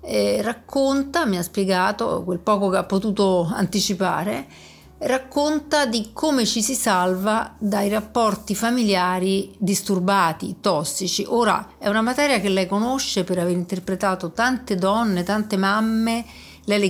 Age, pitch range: 50-69, 185-225 Hz